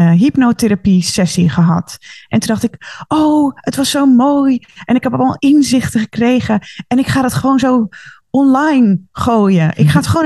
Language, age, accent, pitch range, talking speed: Dutch, 20-39, Dutch, 185-235 Hz, 170 wpm